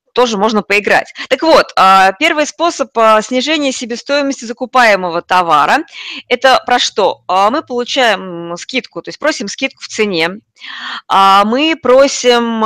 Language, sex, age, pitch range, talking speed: Russian, female, 20-39, 195-250 Hz, 120 wpm